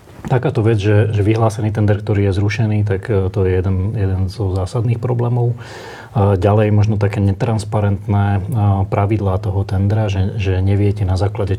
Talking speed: 150 wpm